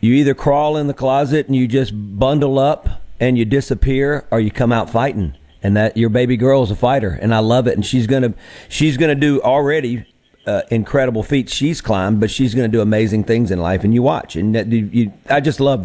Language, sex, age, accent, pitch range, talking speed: English, male, 40-59, American, 115-140 Hz, 230 wpm